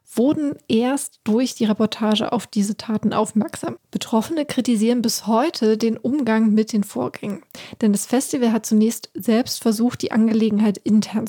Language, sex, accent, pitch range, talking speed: German, female, German, 205-235 Hz, 150 wpm